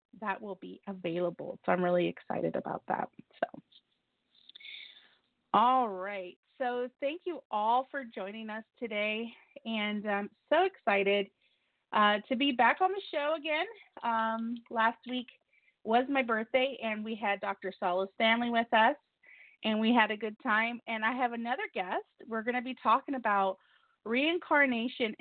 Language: English